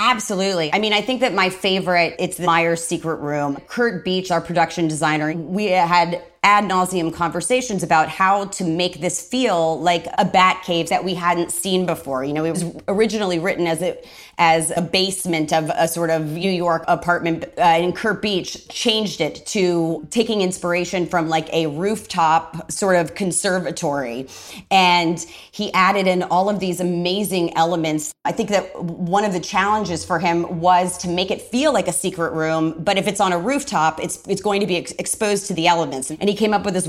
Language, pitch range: English, 165-185 Hz